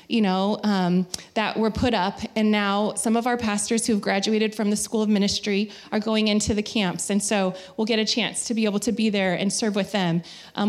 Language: English